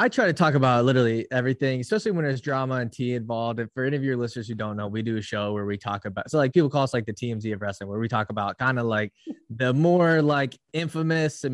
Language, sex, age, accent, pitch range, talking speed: English, male, 20-39, American, 115-145 Hz, 275 wpm